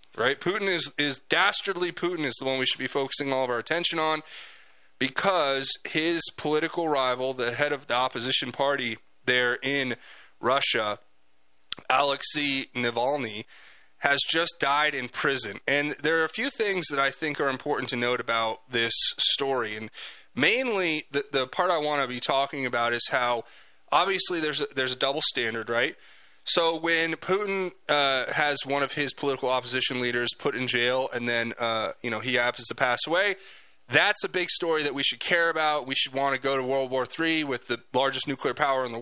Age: 20-39